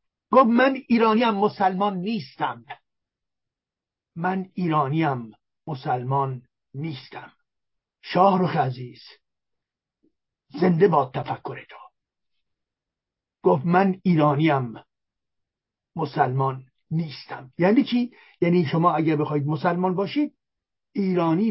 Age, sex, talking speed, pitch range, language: 50-69, male, 90 wpm, 155-230 Hz, Persian